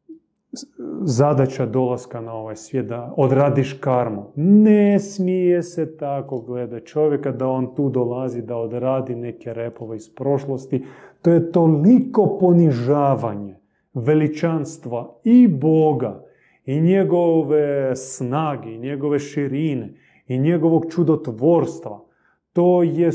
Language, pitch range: Croatian, 120-165 Hz